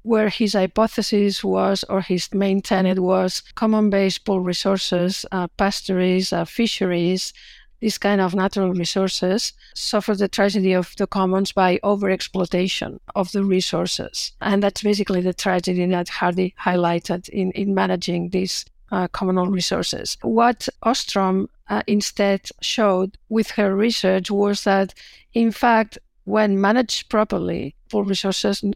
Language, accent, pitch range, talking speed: English, Spanish, 185-215 Hz, 130 wpm